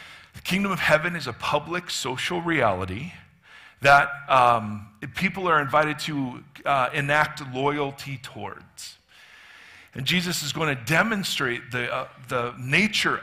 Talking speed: 125 wpm